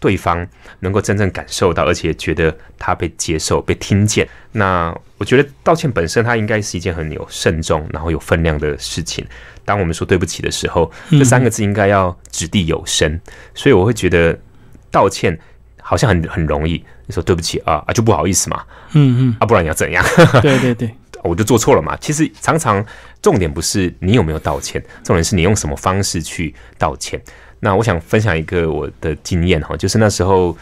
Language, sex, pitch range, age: Chinese, male, 80-105 Hz, 30-49